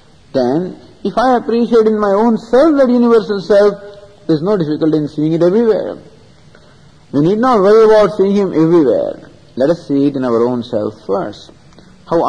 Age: 50-69